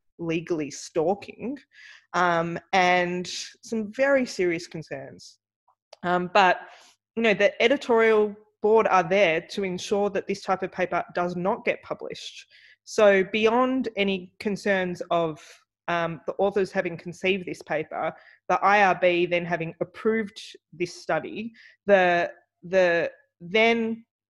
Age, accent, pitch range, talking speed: 20-39, Australian, 170-205 Hz, 125 wpm